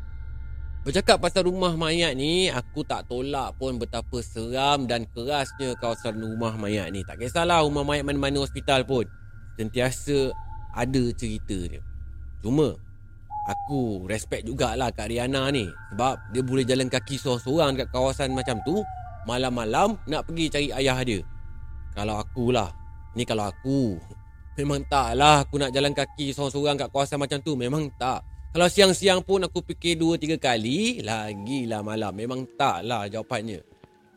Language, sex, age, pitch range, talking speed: Malay, male, 30-49, 110-145 Hz, 145 wpm